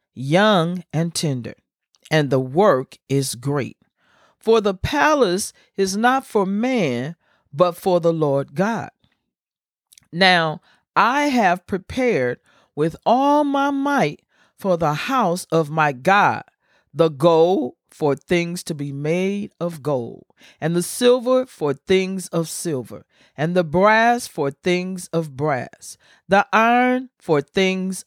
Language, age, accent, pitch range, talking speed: English, 40-59, American, 150-240 Hz, 130 wpm